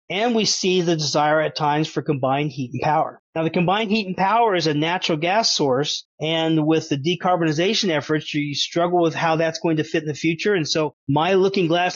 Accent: American